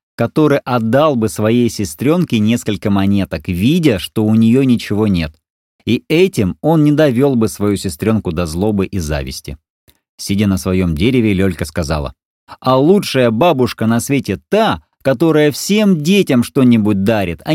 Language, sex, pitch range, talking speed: Russian, male, 85-125 Hz, 145 wpm